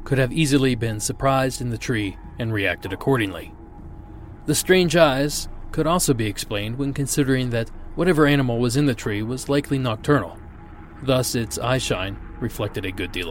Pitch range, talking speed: 100-140 Hz, 170 wpm